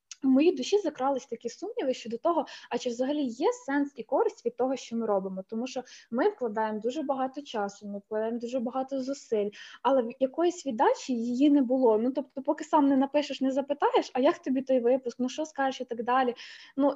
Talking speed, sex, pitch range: 210 wpm, female, 230-275 Hz